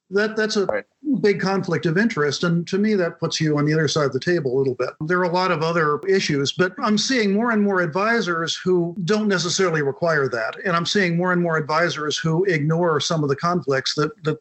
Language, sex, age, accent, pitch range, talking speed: English, male, 50-69, American, 145-185 Hz, 235 wpm